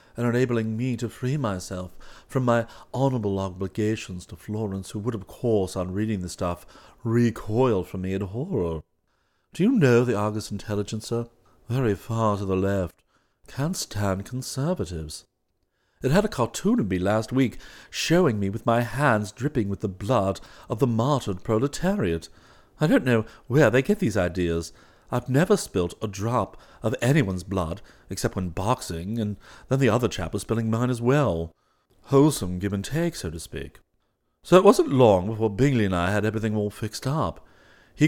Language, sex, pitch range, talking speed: English, male, 95-120 Hz, 175 wpm